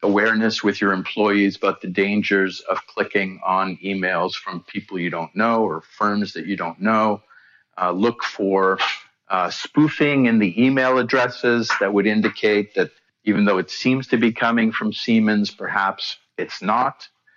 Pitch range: 95-120 Hz